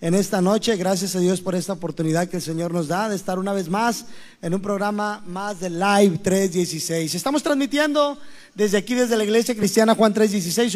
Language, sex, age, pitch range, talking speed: Spanish, male, 30-49, 185-230 Hz, 200 wpm